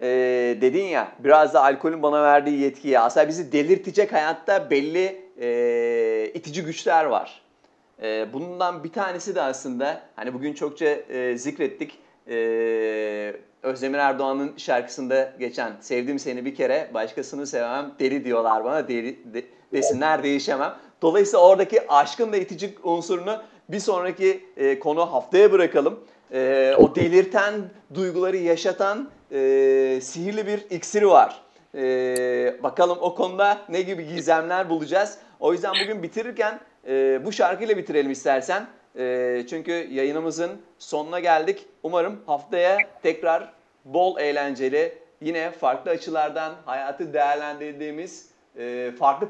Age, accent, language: 40-59, native, Turkish